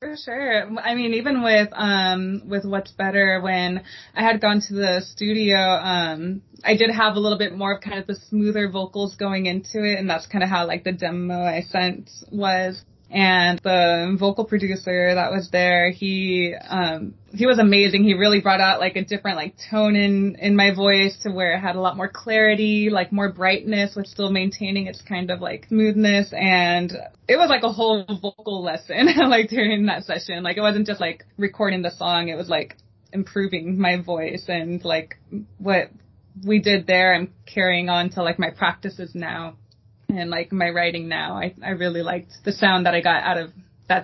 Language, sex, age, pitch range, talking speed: English, female, 20-39, 175-205 Hz, 200 wpm